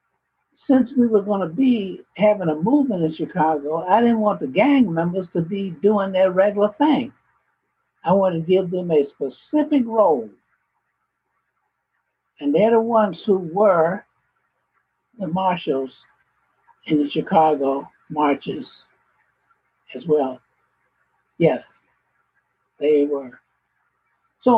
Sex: male